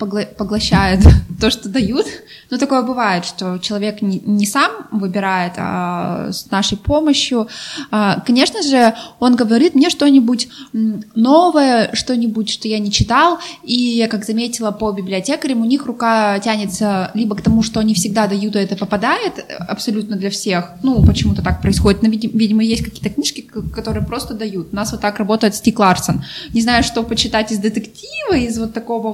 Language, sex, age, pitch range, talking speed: Russian, female, 20-39, 205-245 Hz, 160 wpm